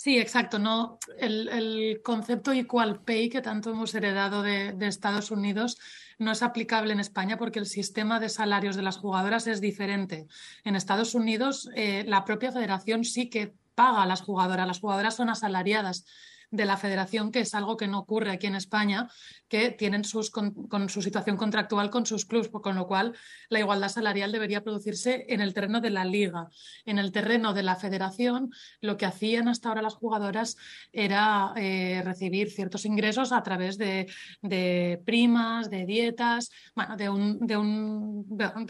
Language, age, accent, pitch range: Spanish, 30-49, Spanish, 200-230 Hz